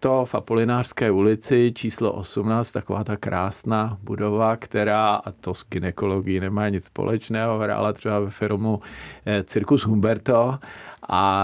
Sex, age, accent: male, 50-69, native